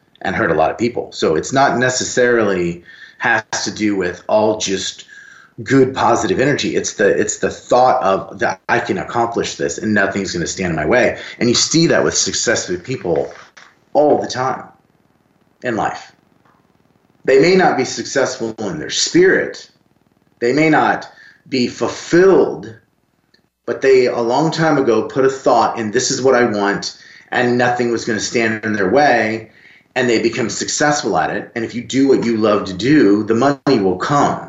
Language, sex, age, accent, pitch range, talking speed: English, male, 30-49, American, 105-130 Hz, 180 wpm